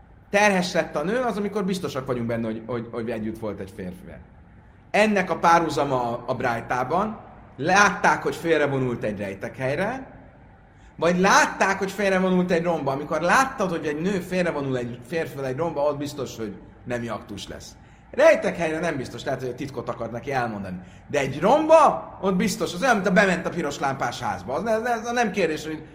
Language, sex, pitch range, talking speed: Hungarian, male, 120-195 Hz, 185 wpm